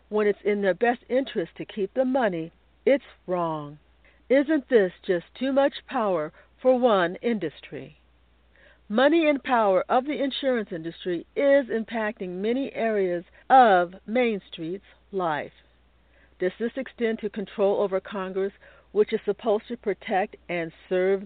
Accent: American